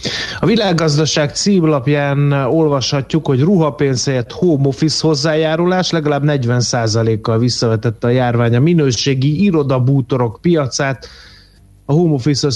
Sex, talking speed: male, 90 wpm